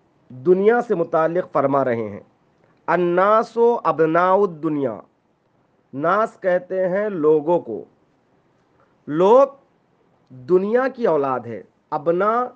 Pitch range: 175-230 Hz